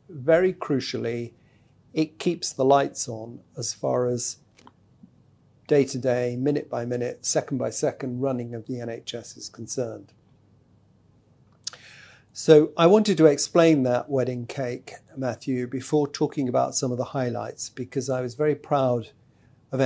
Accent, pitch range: British, 120-145 Hz